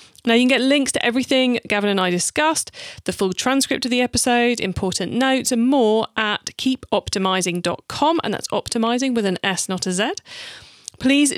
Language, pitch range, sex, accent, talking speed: English, 200-265 Hz, female, British, 175 wpm